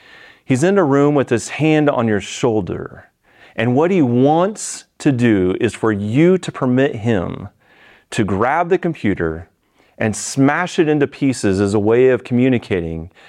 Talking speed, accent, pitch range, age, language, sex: 165 wpm, American, 105-150 Hz, 40-59, English, male